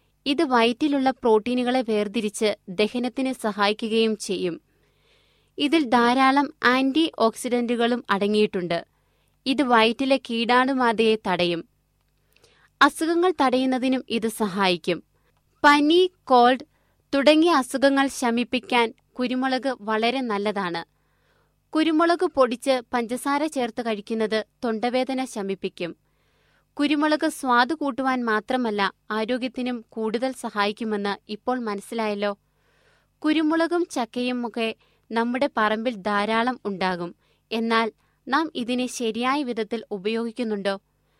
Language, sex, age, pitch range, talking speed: Malayalam, female, 20-39, 215-265 Hz, 80 wpm